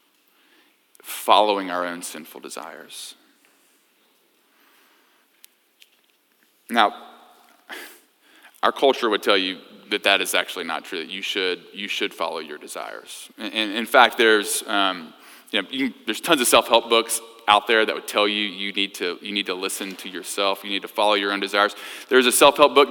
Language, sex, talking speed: English, male, 170 wpm